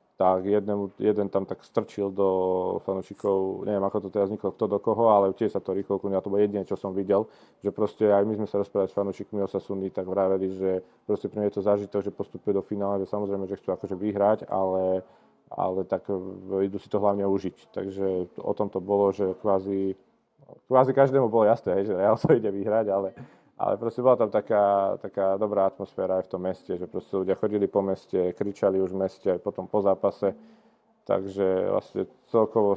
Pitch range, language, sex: 95-105 Hz, Slovak, male